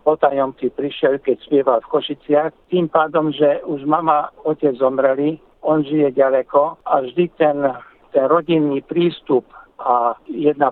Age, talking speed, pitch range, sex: 60-79, 135 wpm, 130-150 Hz, male